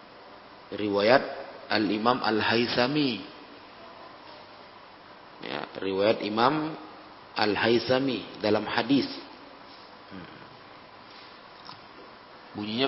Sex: male